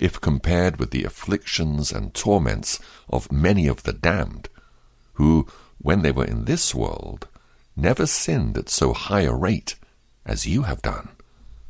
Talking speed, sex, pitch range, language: 155 wpm, male, 70-95 Hz, English